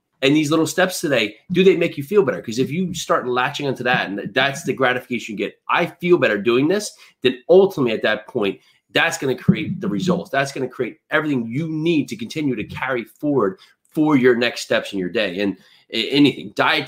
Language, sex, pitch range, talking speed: English, male, 125-155 Hz, 220 wpm